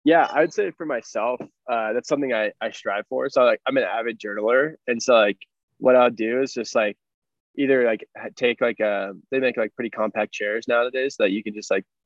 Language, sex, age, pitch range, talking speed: English, male, 20-39, 110-130 Hz, 225 wpm